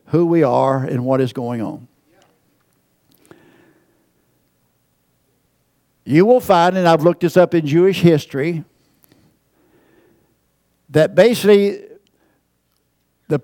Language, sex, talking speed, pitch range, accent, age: English, male, 100 wpm, 155-205 Hz, American, 60-79